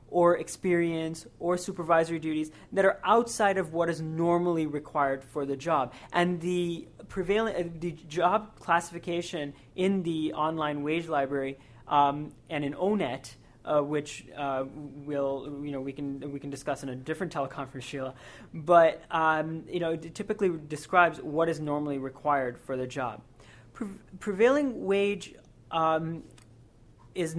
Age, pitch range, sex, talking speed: 30-49, 145-185 Hz, male, 145 wpm